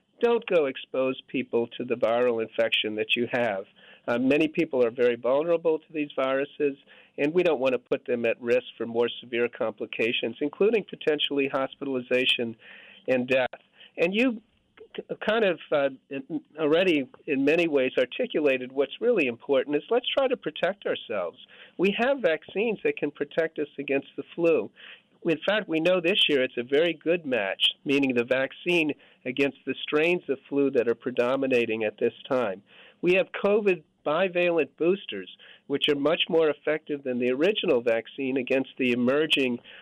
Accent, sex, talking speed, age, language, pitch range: American, male, 165 wpm, 50-69, English, 125-170 Hz